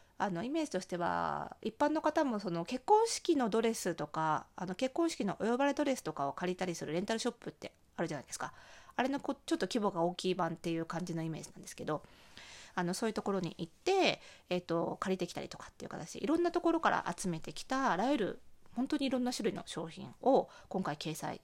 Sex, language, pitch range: female, Japanese, 175-255 Hz